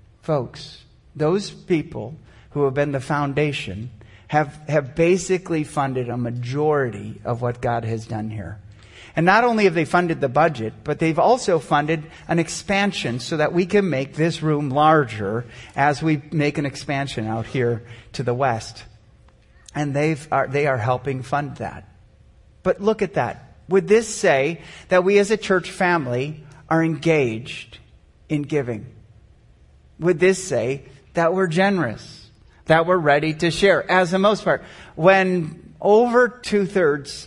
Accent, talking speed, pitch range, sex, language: American, 150 wpm, 115-180 Hz, male, English